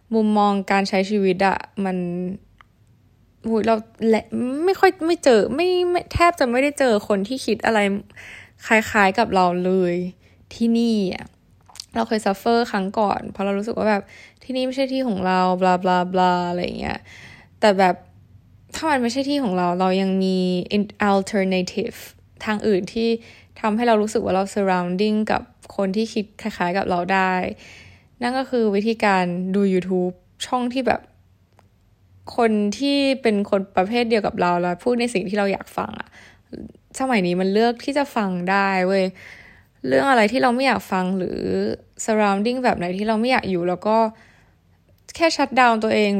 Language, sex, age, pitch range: Thai, female, 10-29, 185-230 Hz